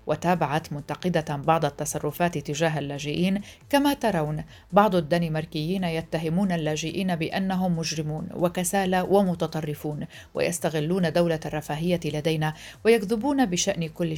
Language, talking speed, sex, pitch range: Arabic, 95 wpm, female, 155-185 Hz